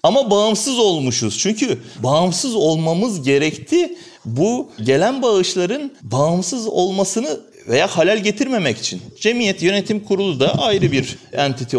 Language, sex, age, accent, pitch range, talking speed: Turkish, male, 40-59, native, 115-180 Hz, 115 wpm